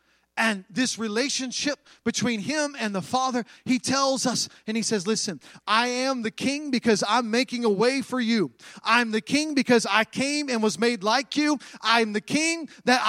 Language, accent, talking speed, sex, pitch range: English, American, 190 wpm, male, 235-295 Hz